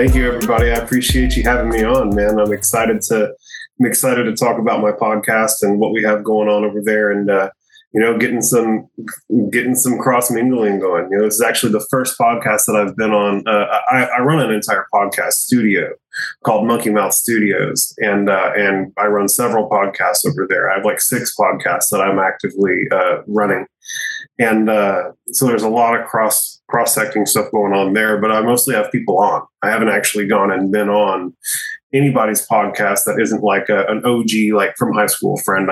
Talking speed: 205 wpm